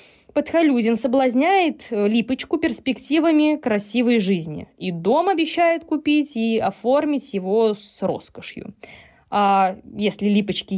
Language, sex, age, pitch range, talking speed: Russian, female, 20-39, 205-295 Hz, 100 wpm